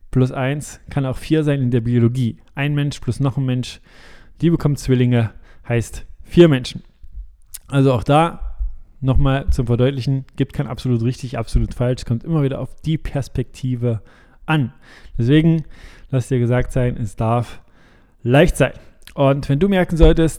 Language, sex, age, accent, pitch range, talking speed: German, male, 20-39, German, 120-145 Hz, 160 wpm